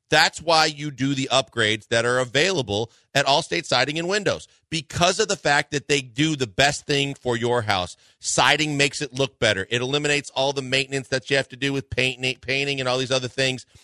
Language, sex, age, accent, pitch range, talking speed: English, male, 40-59, American, 125-160 Hz, 215 wpm